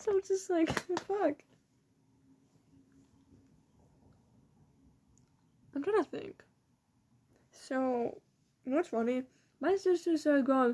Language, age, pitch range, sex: English, 10-29, 210-310 Hz, female